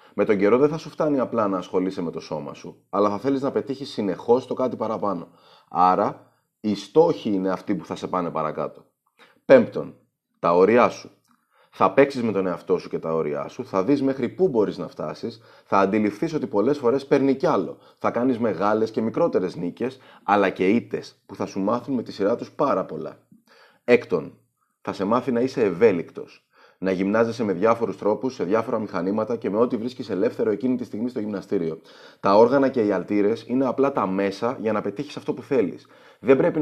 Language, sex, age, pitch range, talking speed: Greek, male, 30-49, 95-135 Hz, 200 wpm